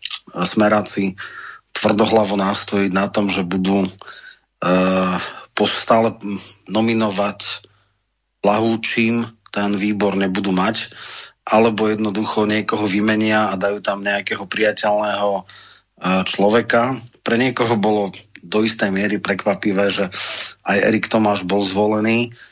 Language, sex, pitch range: Slovak, male, 100-110 Hz